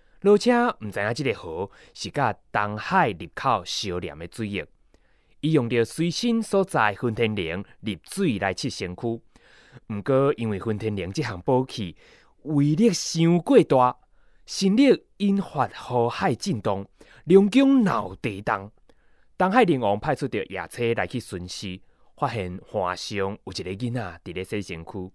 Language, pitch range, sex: Chinese, 100-155 Hz, male